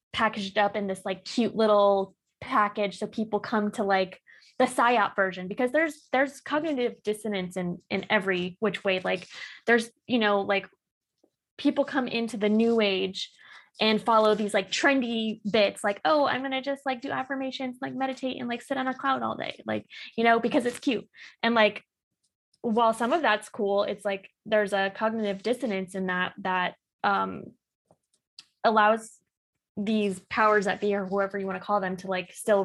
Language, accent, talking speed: English, American, 185 wpm